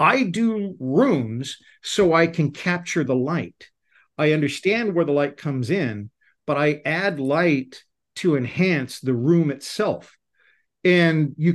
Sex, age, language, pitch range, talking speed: male, 40-59, English, 140-200 Hz, 140 wpm